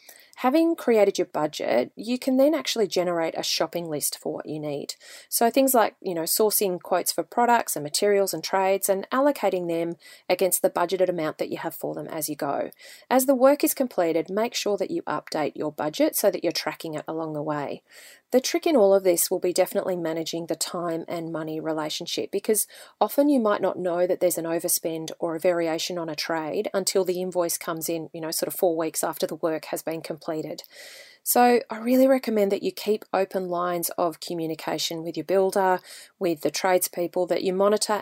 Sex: female